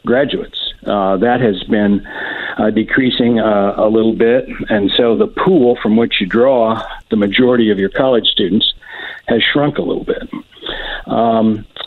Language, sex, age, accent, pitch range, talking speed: English, male, 50-69, American, 110-125 Hz, 155 wpm